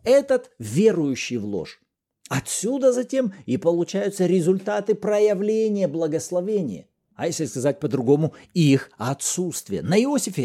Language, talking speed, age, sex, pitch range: Russian, 110 wpm, 50-69, male, 125-185 Hz